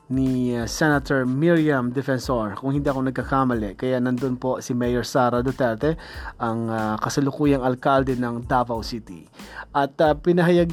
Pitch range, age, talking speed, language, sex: 125-155 Hz, 20-39, 145 wpm, Filipino, male